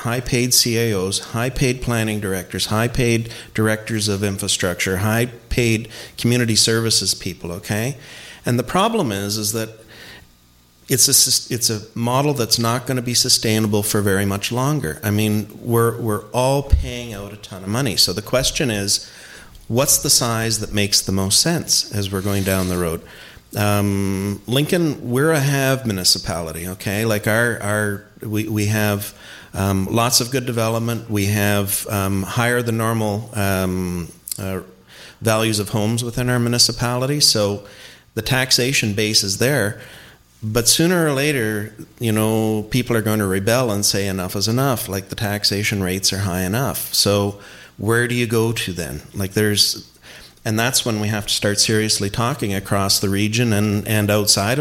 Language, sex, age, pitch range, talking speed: English, male, 40-59, 100-120 Hz, 170 wpm